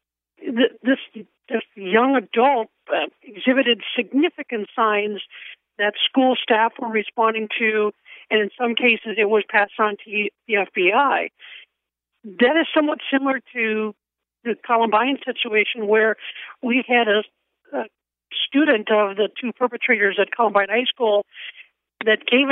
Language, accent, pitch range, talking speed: English, American, 210-255 Hz, 130 wpm